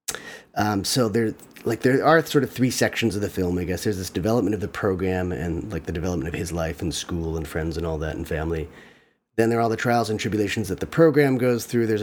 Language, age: English, 40-59